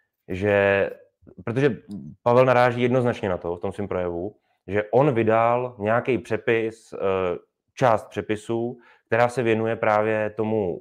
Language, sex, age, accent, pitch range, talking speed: Czech, male, 20-39, native, 100-115 Hz, 130 wpm